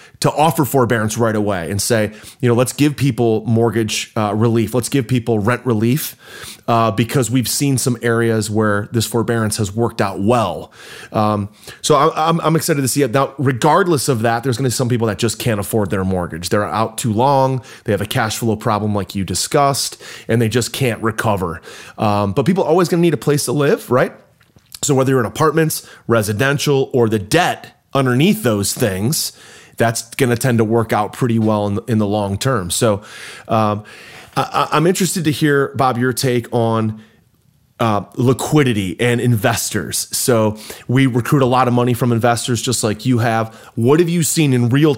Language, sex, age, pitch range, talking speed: English, male, 30-49, 110-130 Hz, 190 wpm